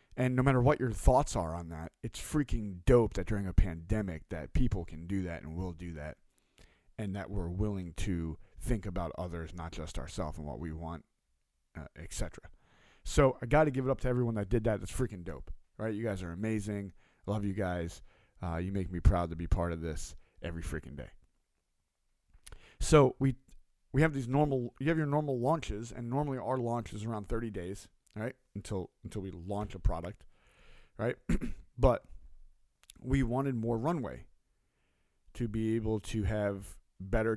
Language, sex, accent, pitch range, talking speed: English, male, American, 85-120 Hz, 190 wpm